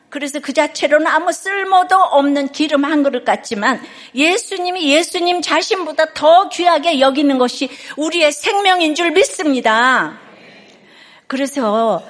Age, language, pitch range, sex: 50-69, Korean, 225-305 Hz, female